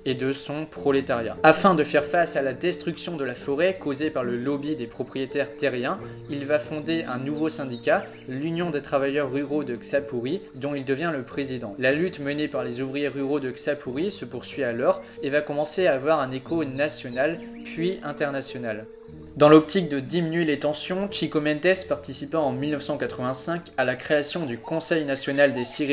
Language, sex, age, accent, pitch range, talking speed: French, male, 20-39, French, 130-155 Hz, 180 wpm